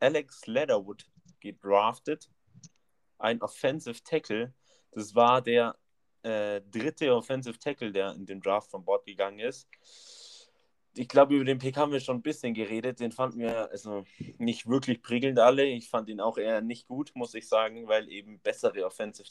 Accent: German